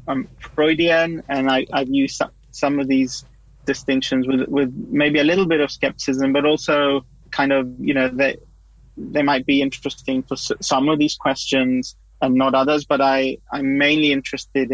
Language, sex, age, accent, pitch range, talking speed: English, male, 30-49, British, 125-140 Hz, 170 wpm